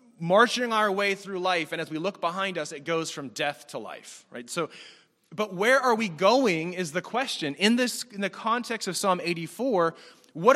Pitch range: 145-205 Hz